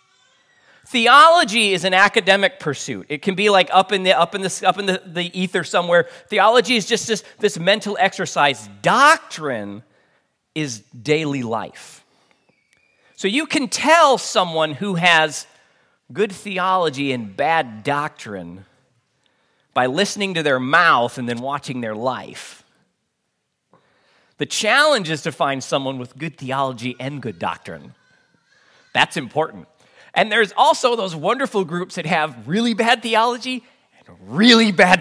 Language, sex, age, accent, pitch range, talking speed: English, male, 40-59, American, 130-200 Hz, 140 wpm